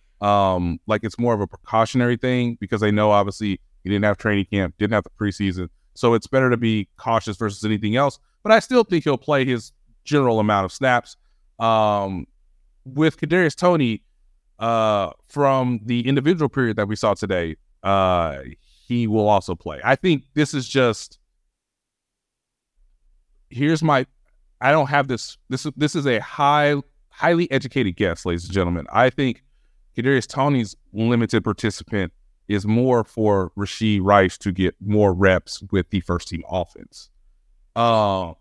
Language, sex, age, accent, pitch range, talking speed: English, male, 30-49, American, 95-130 Hz, 155 wpm